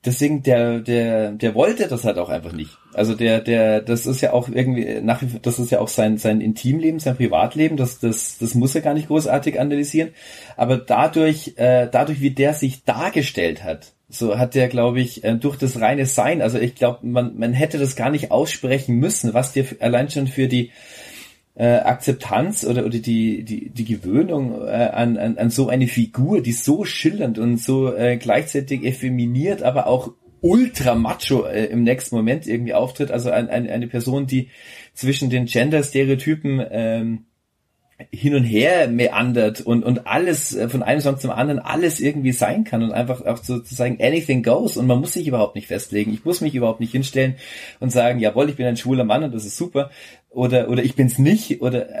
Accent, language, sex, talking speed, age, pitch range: German, German, male, 195 wpm, 40-59, 115-140 Hz